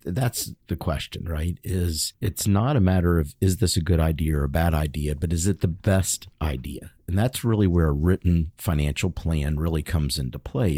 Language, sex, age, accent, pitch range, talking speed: English, male, 50-69, American, 80-105 Hz, 205 wpm